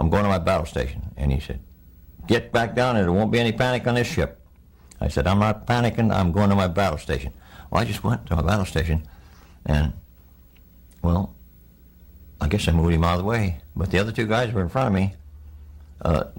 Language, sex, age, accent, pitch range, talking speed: English, male, 60-79, American, 70-95 Hz, 225 wpm